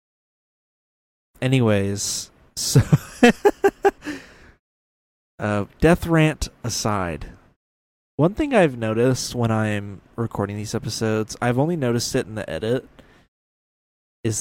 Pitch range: 100-130 Hz